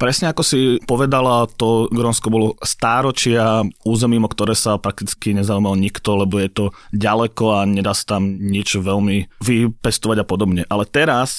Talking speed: 160 wpm